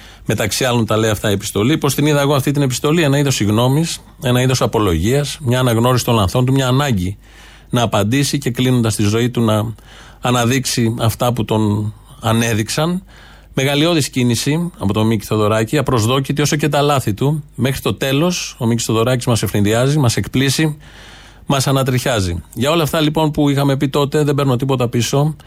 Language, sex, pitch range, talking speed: Greek, male, 120-150 Hz, 180 wpm